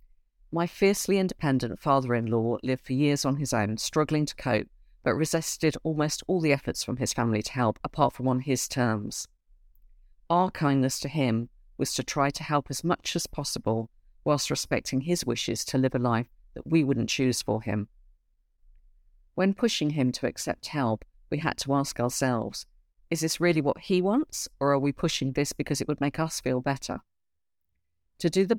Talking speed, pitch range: 185 wpm, 110-150 Hz